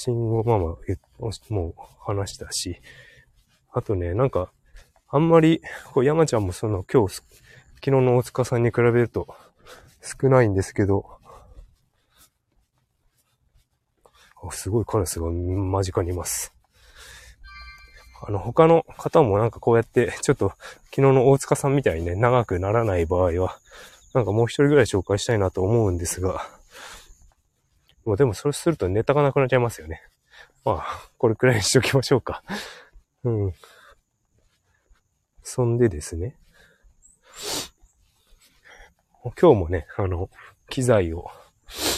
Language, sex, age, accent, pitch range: Japanese, male, 20-39, native, 95-125 Hz